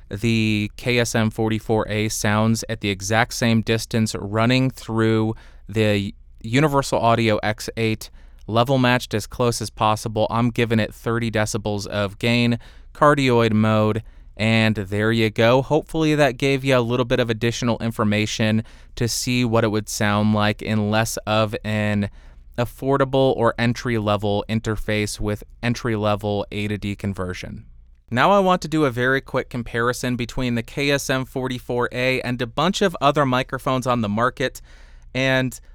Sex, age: male, 20-39